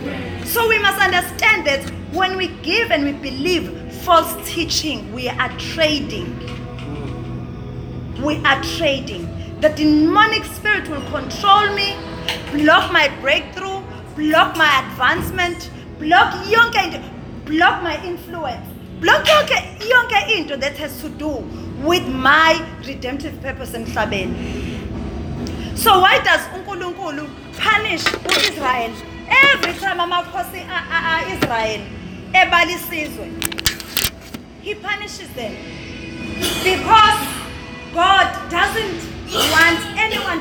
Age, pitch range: 30-49, 305-380 Hz